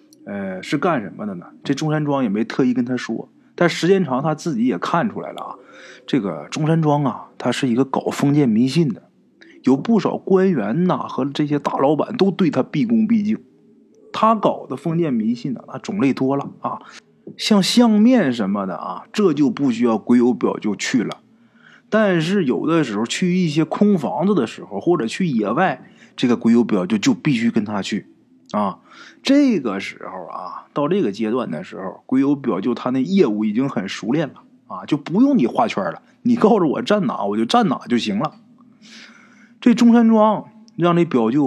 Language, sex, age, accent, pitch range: Chinese, male, 20-39, native, 135-225 Hz